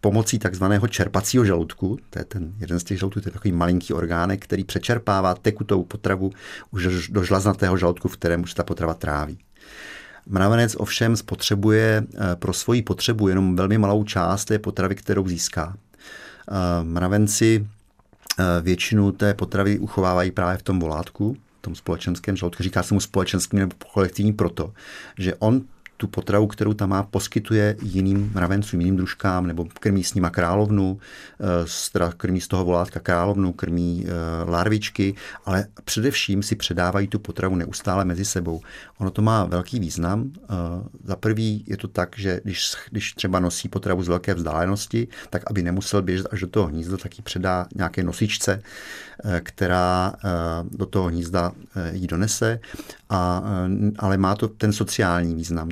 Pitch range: 90-105 Hz